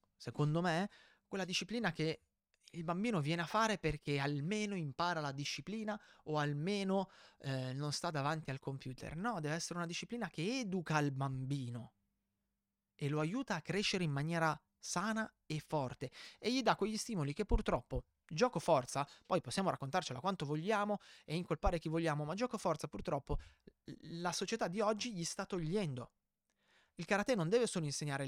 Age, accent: 20-39, native